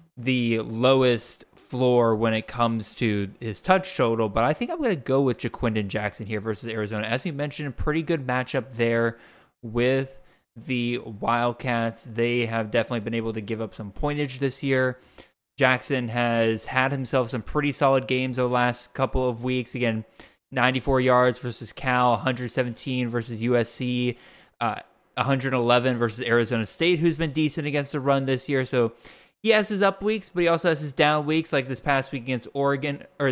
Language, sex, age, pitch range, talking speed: English, male, 20-39, 115-145 Hz, 180 wpm